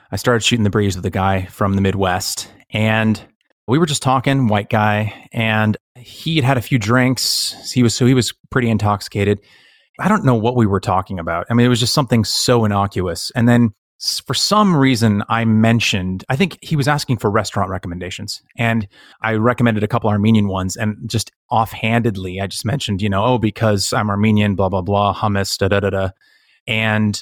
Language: English